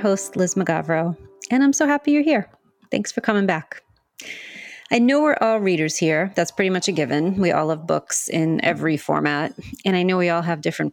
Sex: female